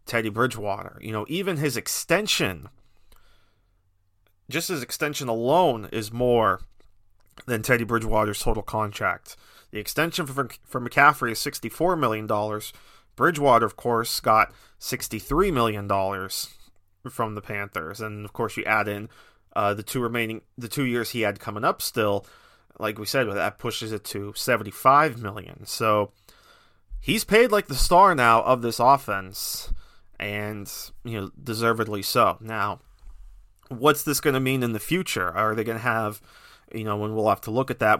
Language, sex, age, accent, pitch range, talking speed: English, male, 30-49, American, 105-130 Hz, 160 wpm